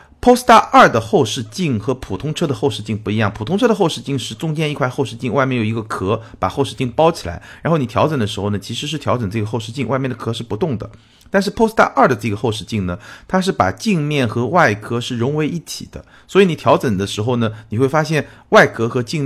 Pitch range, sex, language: 105-145 Hz, male, Chinese